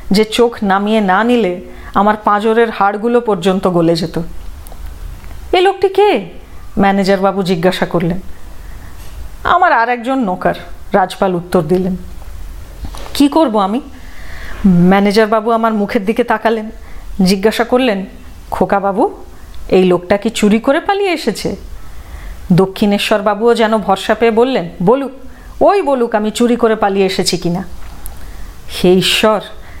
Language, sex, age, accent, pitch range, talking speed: Hindi, female, 30-49, native, 185-245 Hz, 95 wpm